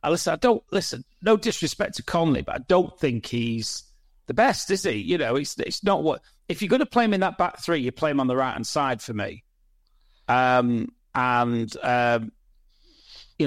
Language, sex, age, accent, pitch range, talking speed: English, male, 40-59, British, 125-180 Hz, 210 wpm